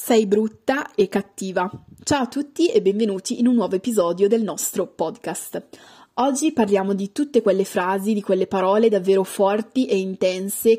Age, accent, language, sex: 20-39, native, Italian, female